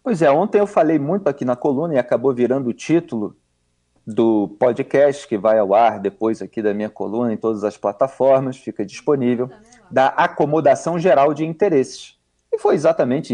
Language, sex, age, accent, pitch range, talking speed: Portuguese, male, 40-59, Brazilian, 120-175 Hz, 175 wpm